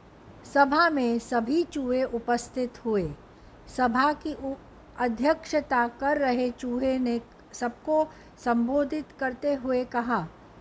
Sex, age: female, 60-79